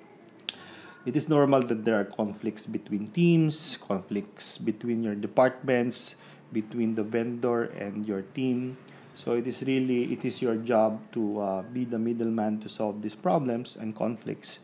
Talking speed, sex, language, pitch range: 155 wpm, male, English, 105-125 Hz